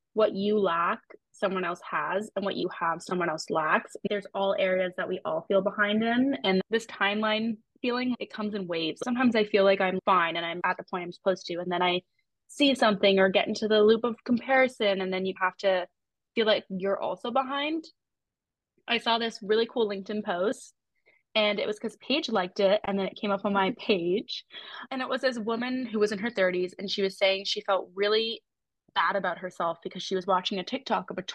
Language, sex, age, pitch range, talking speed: English, female, 20-39, 190-225 Hz, 220 wpm